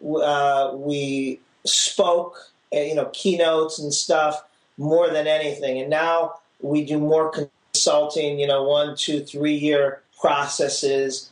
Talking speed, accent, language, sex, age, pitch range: 125 wpm, American, English, male, 40-59, 140-165 Hz